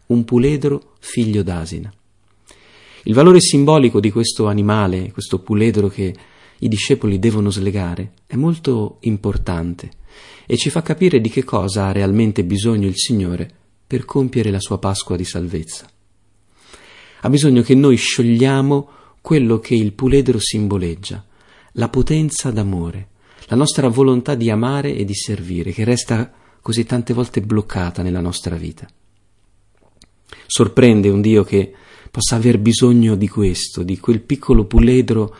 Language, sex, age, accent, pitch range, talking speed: Italian, male, 40-59, native, 95-120 Hz, 140 wpm